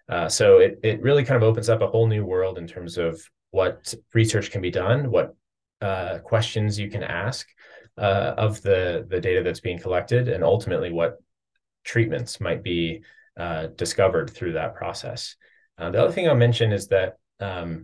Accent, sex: American, male